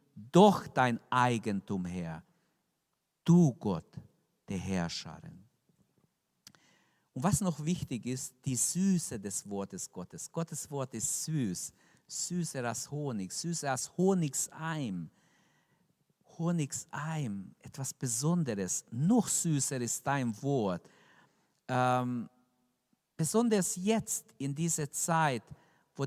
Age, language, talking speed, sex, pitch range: 50-69, German, 100 wpm, male, 115-165 Hz